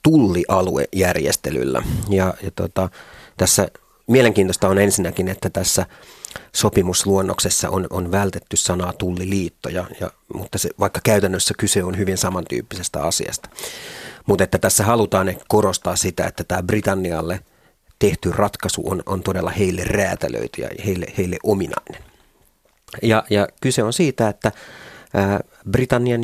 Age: 30-49